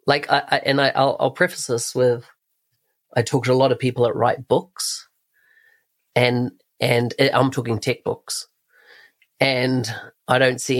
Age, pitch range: 30-49, 120-140 Hz